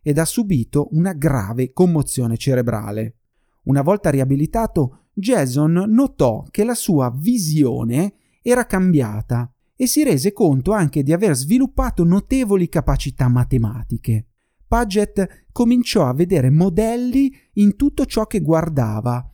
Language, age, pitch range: Italian, 30-49, 130-195 Hz